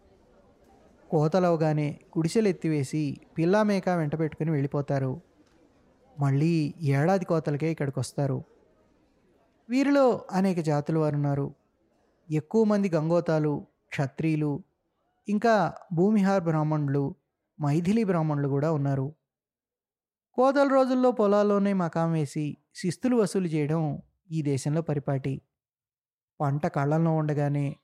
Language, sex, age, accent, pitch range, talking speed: Telugu, male, 20-39, native, 145-190 Hz, 90 wpm